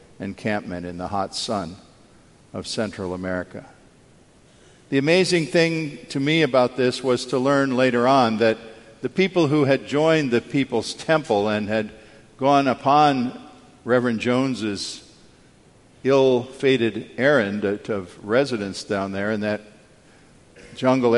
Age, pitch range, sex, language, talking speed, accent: 50-69, 105-130 Hz, male, English, 125 wpm, American